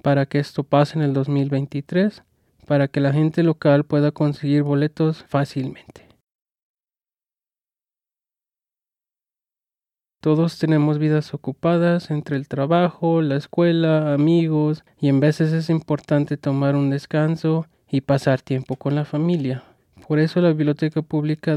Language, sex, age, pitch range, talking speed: English, male, 20-39, 140-160 Hz, 125 wpm